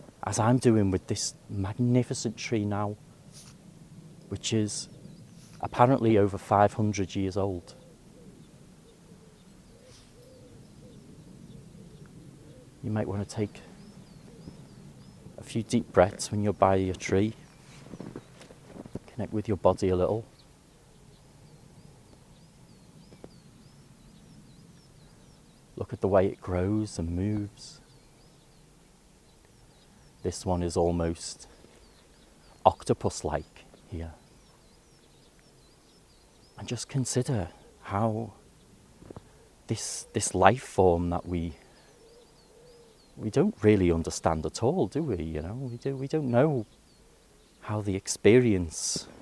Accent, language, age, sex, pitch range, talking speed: British, English, 40-59, male, 95-140 Hz, 95 wpm